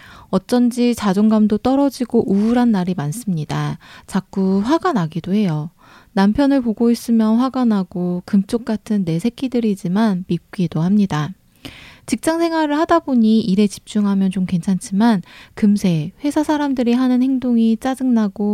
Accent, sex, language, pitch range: native, female, Korean, 180-235 Hz